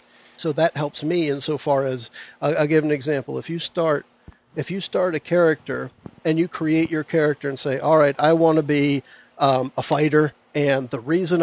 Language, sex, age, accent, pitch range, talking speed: English, male, 50-69, American, 140-160 Hz, 205 wpm